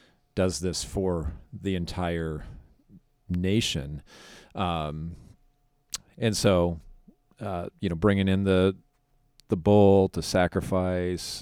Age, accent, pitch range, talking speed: 40-59, American, 80-95 Hz, 100 wpm